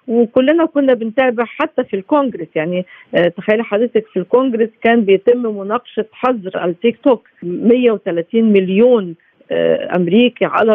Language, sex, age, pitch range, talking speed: Arabic, female, 50-69, 185-235 Hz, 115 wpm